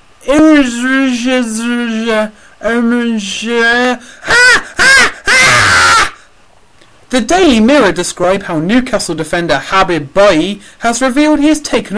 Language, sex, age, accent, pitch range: English, male, 30-49, British, 185-255 Hz